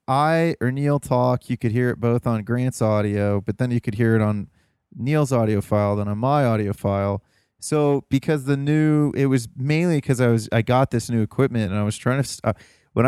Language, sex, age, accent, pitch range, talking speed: English, male, 20-39, American, 105-130 Hz, 225 wpm